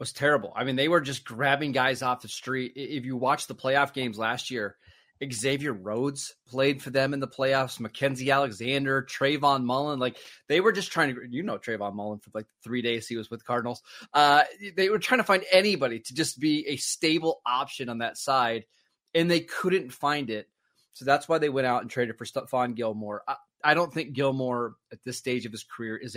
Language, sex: English, male